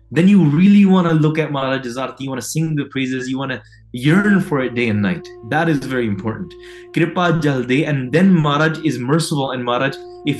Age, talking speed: 20-39, 220 wpm